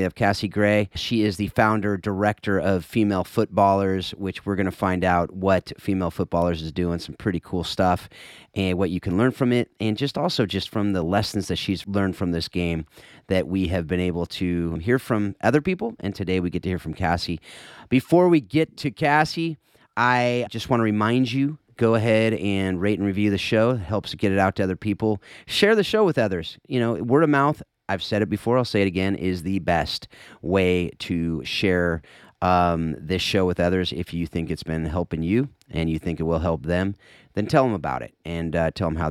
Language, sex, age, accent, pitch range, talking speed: English, male, 30-49, American, 90-120 Hz, 225 wpm